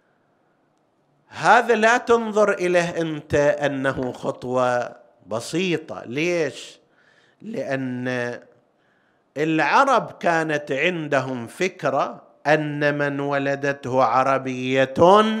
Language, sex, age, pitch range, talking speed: Arabic, male, 50-69, 135-190 Hz, 70 wpm